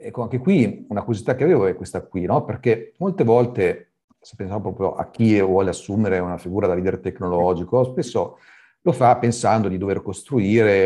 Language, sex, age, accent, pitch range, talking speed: Italian, male, 40-59, native, 95-115 Hz, 180 wpm